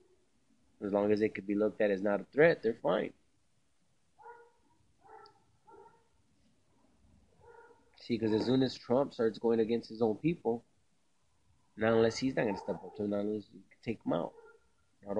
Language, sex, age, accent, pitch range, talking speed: English, male, 30-49, American, 100-120 Hz, 160 wpm